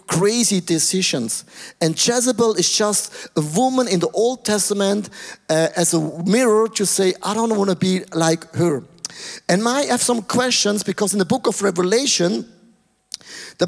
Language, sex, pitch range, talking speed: English, male, 165-220 Hz, 160 wpm